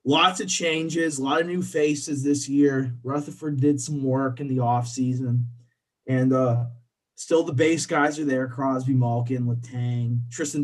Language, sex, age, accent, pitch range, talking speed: English, male, 20-39, American, 120-140 Hz, 165 wpm